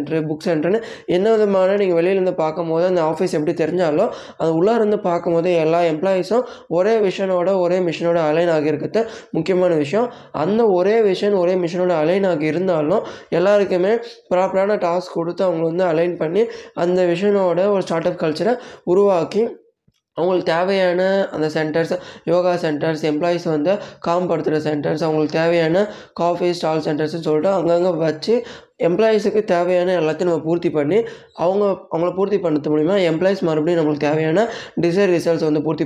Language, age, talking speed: Tamil, 20-39, 145 wpm